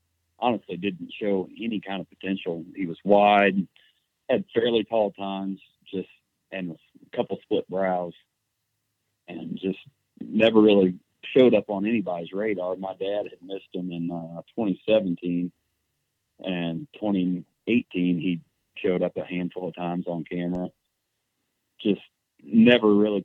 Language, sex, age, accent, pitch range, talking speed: English, male, 40-59, American, 90-105 Hz, 130 wpm